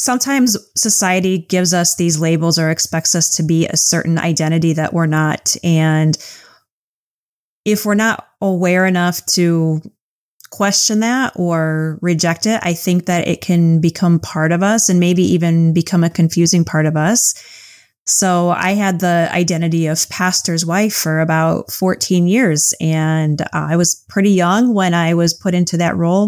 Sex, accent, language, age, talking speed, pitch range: female, American, English, 20-39, 165 wpm, 165-195 Hz